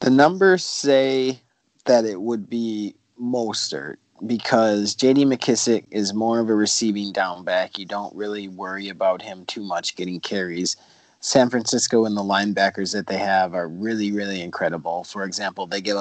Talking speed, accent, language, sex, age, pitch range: 165 wpm, American, English, male, 30-49, 95-110 Hz